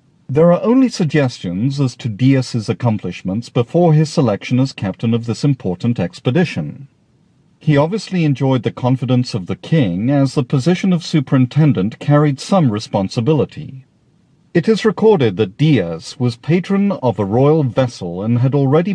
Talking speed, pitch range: 150 wpm, 125-165 Hz